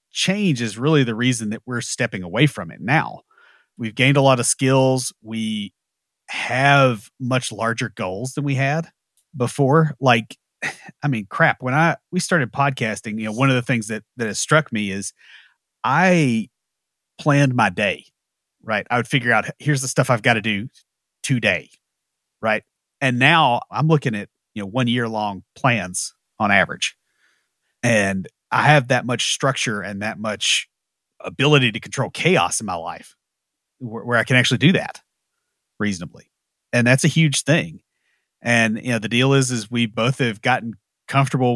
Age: 30-49